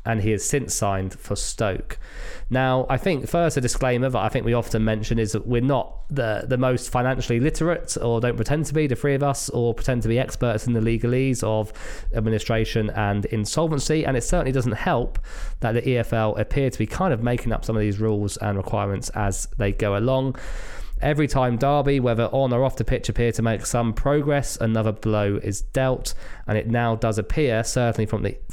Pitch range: 105-130 Hz